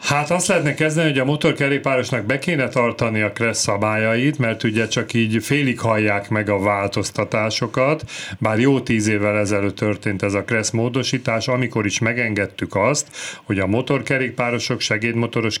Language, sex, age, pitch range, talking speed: Hungarian, male, 40-59, 110-140 Hz, 155 wpm